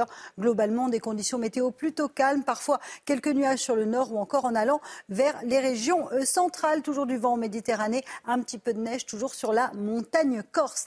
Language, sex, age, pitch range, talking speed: French, female, 40-59, 235-290 Hz, 195 wpm